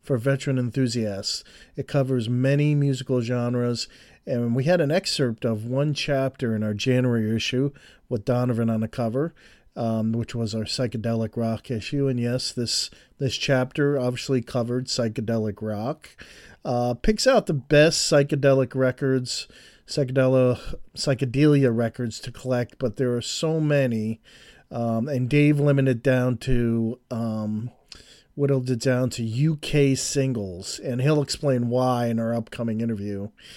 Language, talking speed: English, 140 wpm